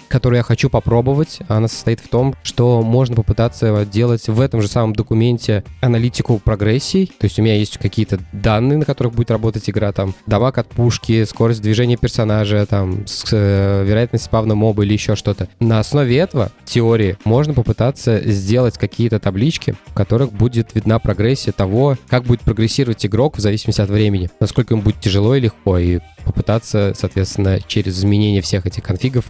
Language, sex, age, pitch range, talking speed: Russian, male, 20-39, 105-120 Hz, 170 wpm